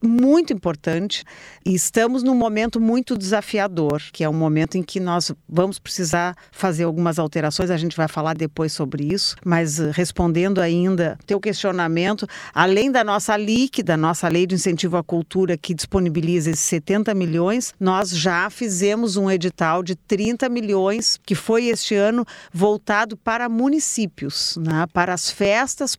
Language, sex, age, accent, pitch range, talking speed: Portuguese, female, 50-69, Brazilian, 175-220 Hz, 150 wpm